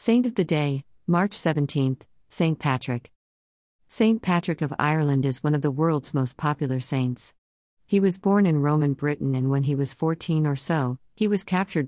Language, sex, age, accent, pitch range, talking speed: Malayalam, female, 50-69, American, 130-160 Hz, 180 wpm